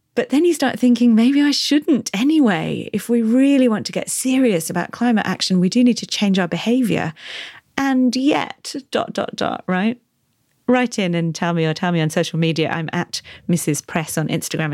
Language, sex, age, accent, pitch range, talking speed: English, female, 30-49, British, 165-230 Hz, 200 wpm